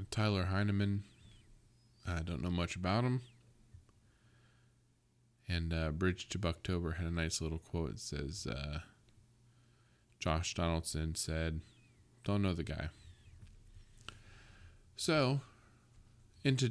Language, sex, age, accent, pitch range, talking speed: English, male, 20-39, American, 90-115 Hz, 110 wpm